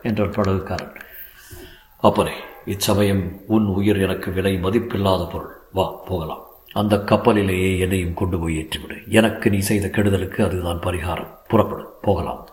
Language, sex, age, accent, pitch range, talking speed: Tamil, male, 50-69, native, 95-125 Hz, 110 wpm